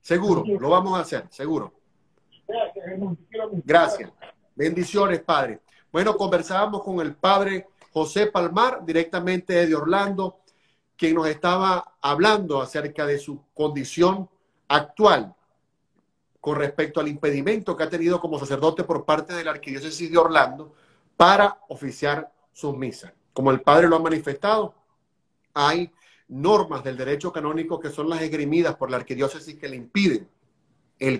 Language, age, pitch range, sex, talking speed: Spanish, 40-59, 140-175 Hz, male, 135 wpm